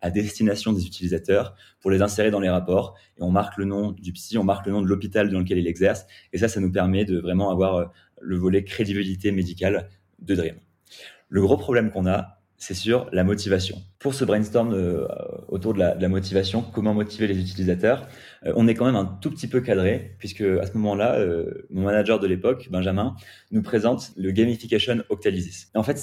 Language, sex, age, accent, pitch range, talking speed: French, male, 30-49, French, 95-110 Hz, 210 wpm